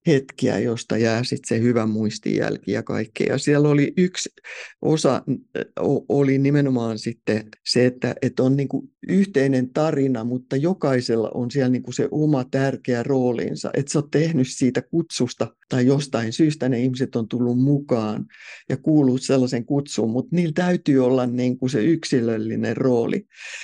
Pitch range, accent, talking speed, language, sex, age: 125-155 Hz, native, 150 wpm, Finnish, male, 50-69